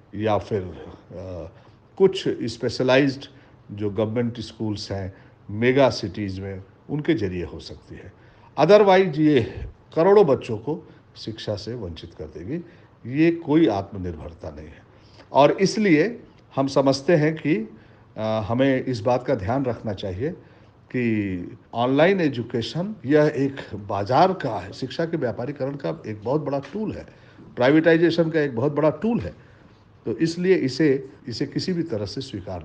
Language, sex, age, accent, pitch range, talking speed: Hindi, male, 50-69, native, 105-155 Hz, 145 wpm